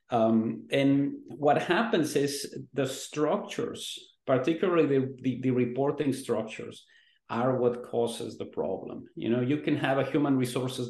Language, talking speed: English, 145 wpm